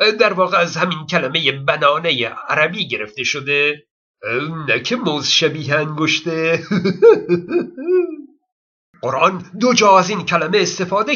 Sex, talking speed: male, 115 wpm